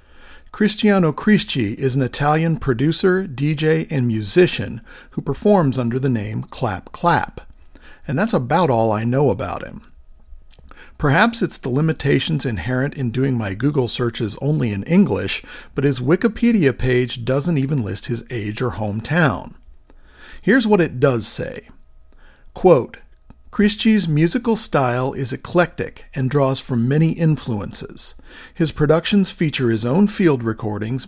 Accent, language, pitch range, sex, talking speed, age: American, English, 115-165 Hz, male, 135 wpm, 50-69